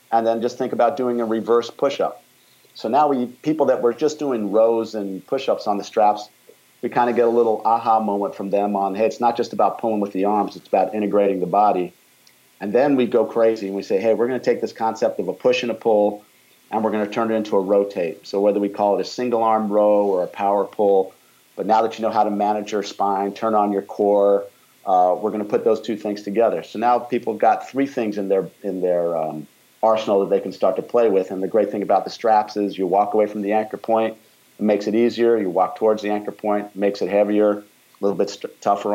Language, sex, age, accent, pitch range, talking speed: English, male, 50-69, American, 100-115 Hz, 255 wpm